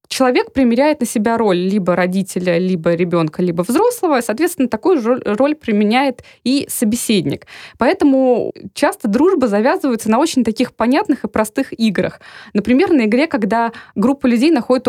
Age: 20-39